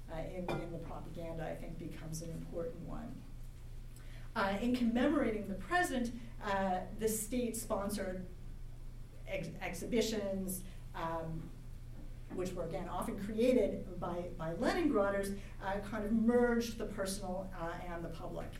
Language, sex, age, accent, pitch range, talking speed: English, female, 50-69, American, 180-225 Hz, 130 wpm